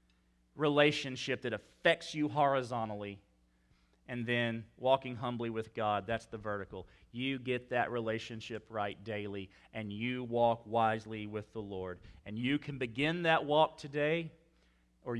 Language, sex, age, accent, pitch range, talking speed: English, male, 40-59, American, 100-140 Hz, 140 wpm